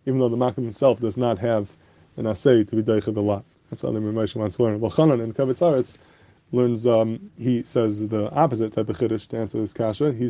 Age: 20-39